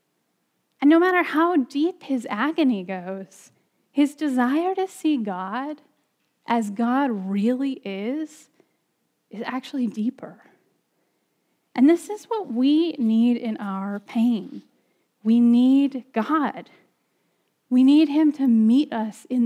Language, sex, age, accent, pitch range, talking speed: English, female, 10-29, American, 230-300 Hz, 120 wpm